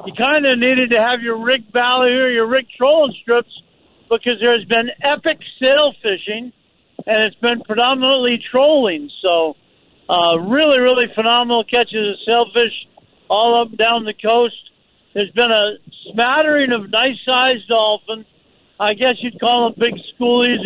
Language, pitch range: English, 220-255 Hz